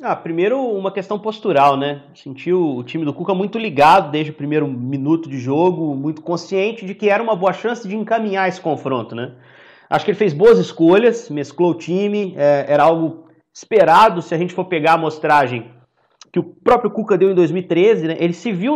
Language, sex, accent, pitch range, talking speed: Portuguese, male, Brazilian, 155-210 Hz, 200 wpm